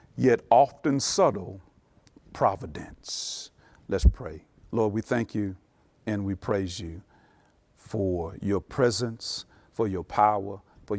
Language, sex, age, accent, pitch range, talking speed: English, male, 50-69, American, 100-130 Hz, 115 wpm